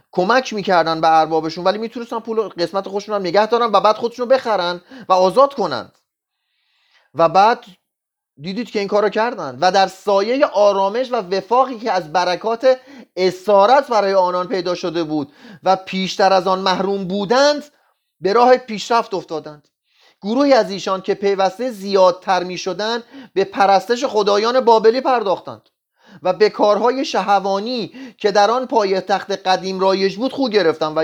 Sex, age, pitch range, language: male, 30-49, 175-225 Hz, Persian